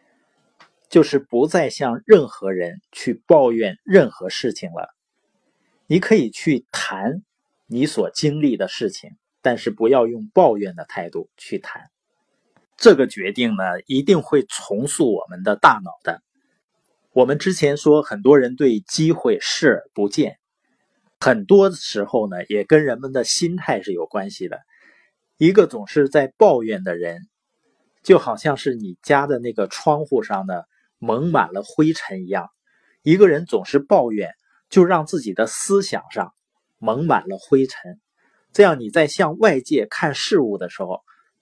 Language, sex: Chinese, male